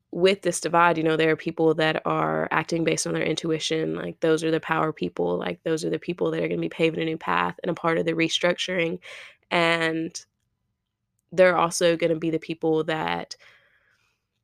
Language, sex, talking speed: English, female, 210 wpm